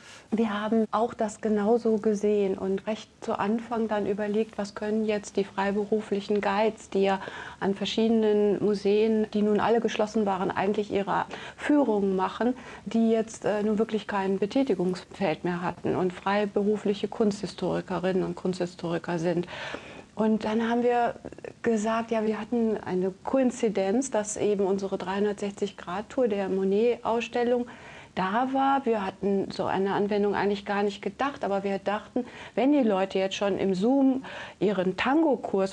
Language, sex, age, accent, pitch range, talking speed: German, female, 30-49, German, 195-230 Hz, 145 wpm